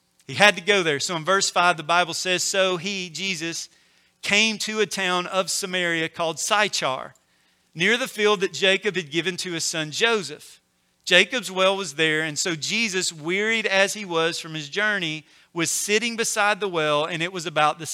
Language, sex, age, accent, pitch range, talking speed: English, male, 40-59, American, 160-200 Hz, 195 wpm